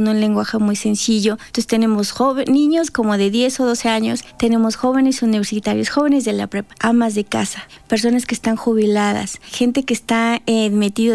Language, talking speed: Spanish, 180 wpm